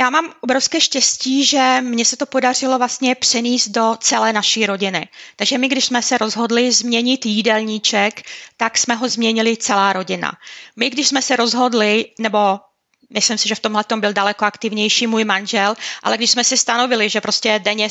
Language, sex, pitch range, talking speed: Czech, female, 210-250 Hz, 180 wpm